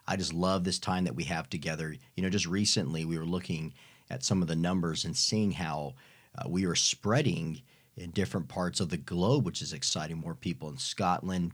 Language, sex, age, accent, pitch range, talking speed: English, male, 40-59, American, 85-100 Hz, 215 wpm